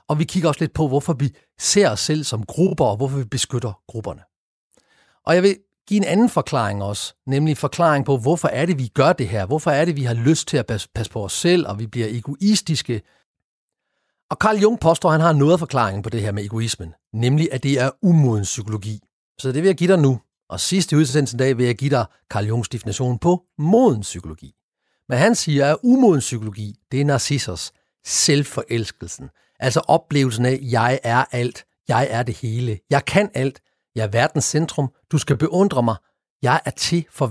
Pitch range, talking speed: 120-170 Hz, 210 wpm